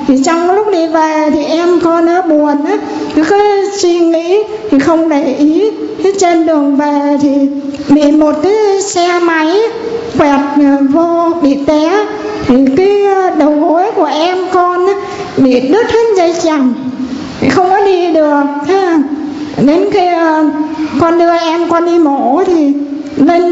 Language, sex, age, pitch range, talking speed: Vietnamese, female, 60-79, 290-365 Hz, 145 wpm